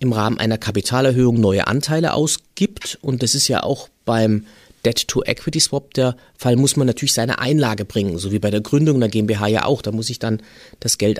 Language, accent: German, German